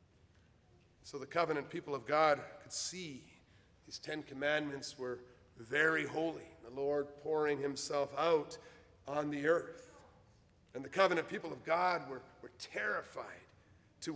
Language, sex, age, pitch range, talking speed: English, male, 50-69, 145-225 Hz, 135 wpm